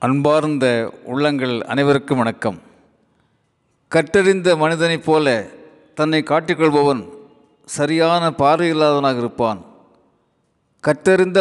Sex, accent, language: male, native, Tamil